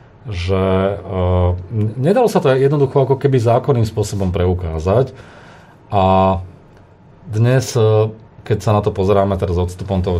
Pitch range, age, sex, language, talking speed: 90-105 Hz, 30-49, male, Slovak, 140 wpm